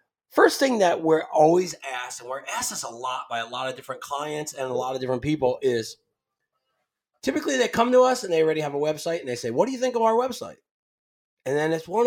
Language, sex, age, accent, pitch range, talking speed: English, male, 30-49, American, 130-180 Hz, 250 wpm